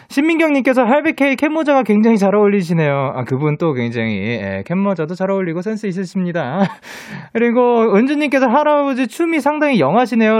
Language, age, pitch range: Korean, 20-39, 140-230 Hz